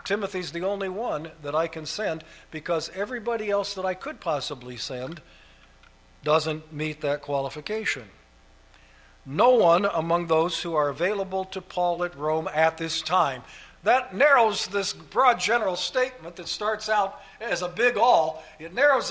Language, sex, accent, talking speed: English, male, American, 155 wpm